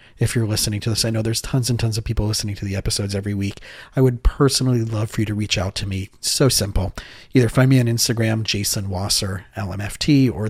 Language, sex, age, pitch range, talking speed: English, male, 40-59, 100-120 Hz, 235 wpm